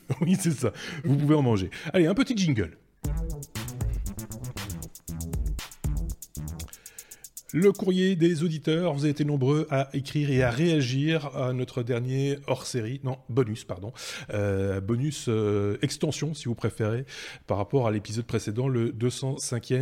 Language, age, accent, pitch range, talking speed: French, 30-49, French, 110-145 Hz, 135 wpm